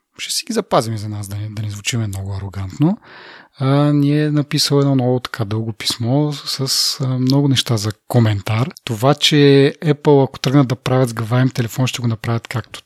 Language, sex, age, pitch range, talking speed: Bulgarian, male, 30-49, 115-145 Hz, 190 wpm